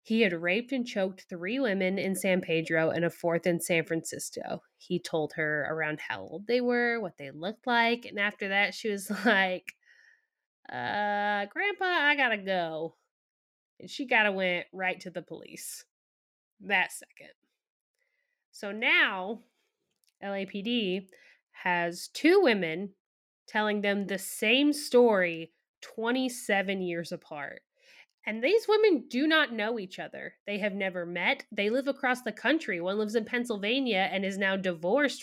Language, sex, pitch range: English, female, 180-245 Hz